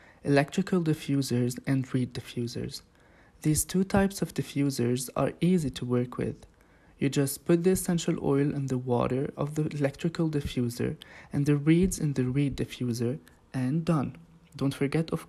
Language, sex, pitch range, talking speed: English, male, 130-160 Hz, 155 wpm